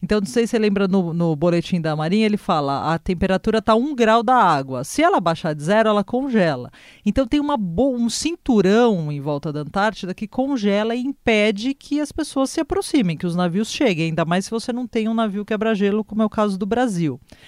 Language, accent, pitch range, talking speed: Portuguese, Brazilian, 175-235 Hz, 225 wpm